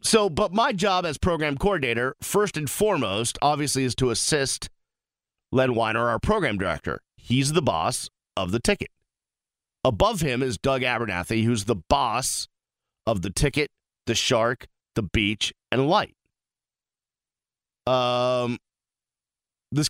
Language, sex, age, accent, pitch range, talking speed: English, male, 40-59, American, 100-145 Hz, 135 wpm